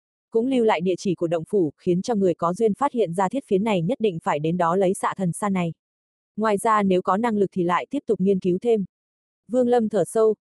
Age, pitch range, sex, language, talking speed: 20-39, 180-225 Hz, female, Vietnamese, 265 wpm